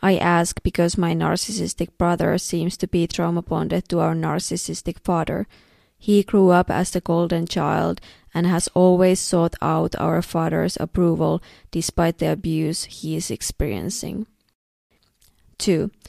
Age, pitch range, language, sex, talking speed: 20-39, 165-185 Hz, English, female, 140 wpm